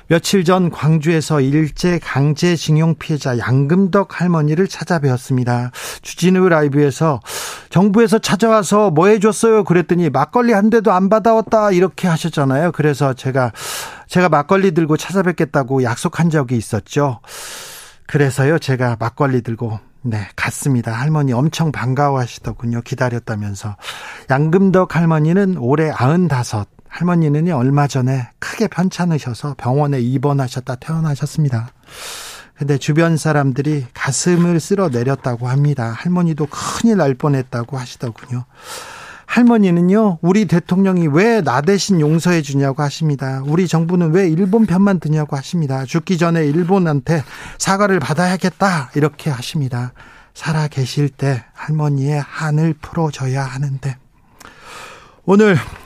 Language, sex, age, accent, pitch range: Korean, male, 40-59, native, 135-180 Hz